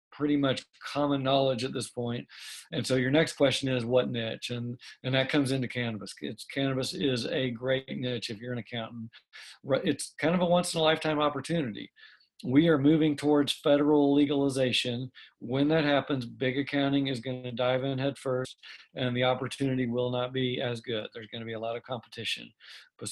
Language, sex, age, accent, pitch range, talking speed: English, male, 50-69, American, 125-145 Hz, 185 wpm